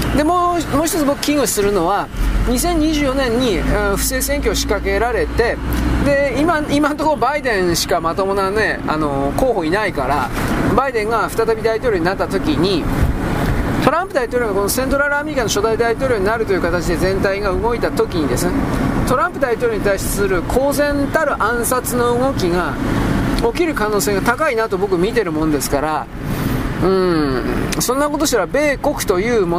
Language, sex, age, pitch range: Japanese, male, 40-59, 200-295 Hz